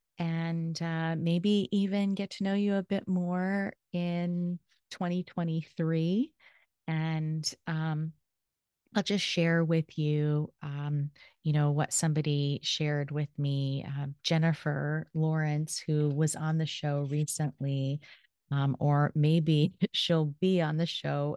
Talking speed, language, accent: 125 wpm, English, American